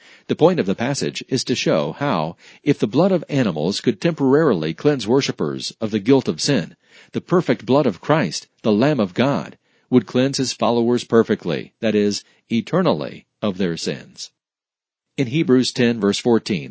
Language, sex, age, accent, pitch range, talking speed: English, male, 50-69, American, 115-140 Hz, 170 wpm